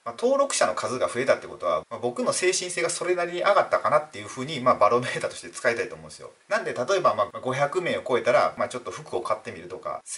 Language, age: Japanese, 30-49